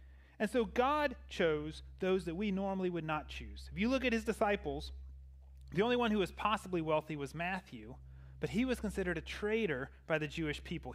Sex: male